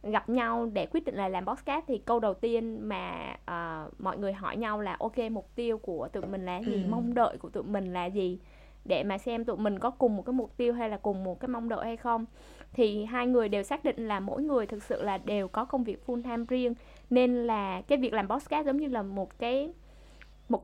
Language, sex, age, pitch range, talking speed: Vietnamese, female, 10-29, 200-245 Hz, 245 wpm